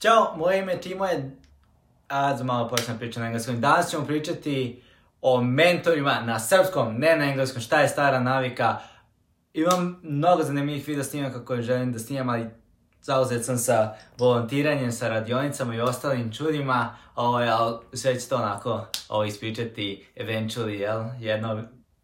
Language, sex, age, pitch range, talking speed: English, male, 20-39, 110-130 Hz, 145 wpm